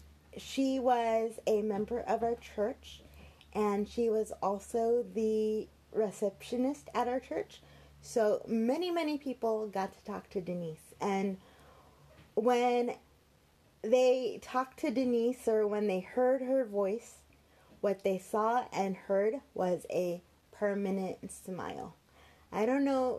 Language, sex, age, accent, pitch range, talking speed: English, female, 20-39, American, 175-235 Hz, 125 wpm